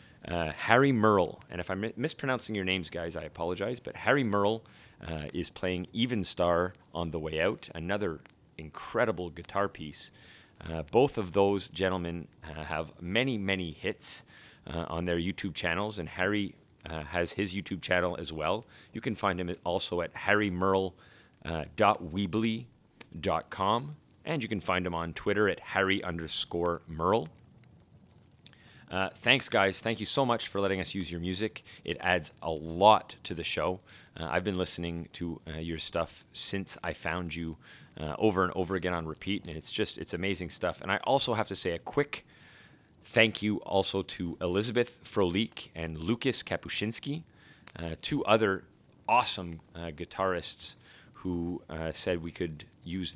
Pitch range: 85-105 Hz